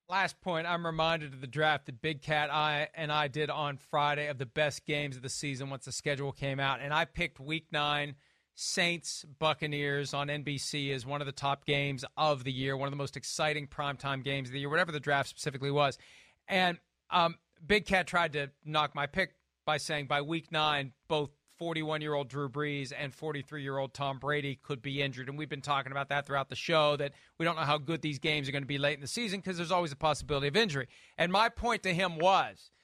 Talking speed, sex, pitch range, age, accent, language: 225 wpm, male, 140-175 Hz, 40-59, American, English